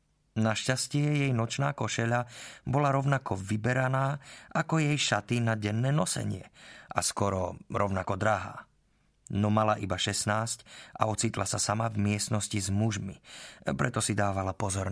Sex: male